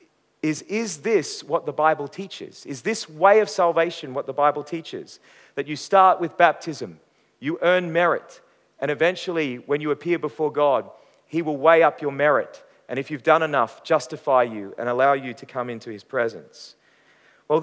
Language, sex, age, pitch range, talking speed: English, male, 40-59, 135-175 Hz, 180 wpm